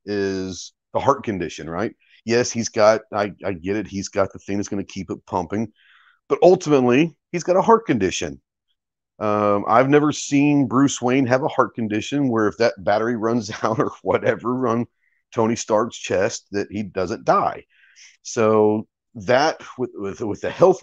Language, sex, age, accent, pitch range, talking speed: English, male, 40-59, American, 100-125 Hz, 180 wpm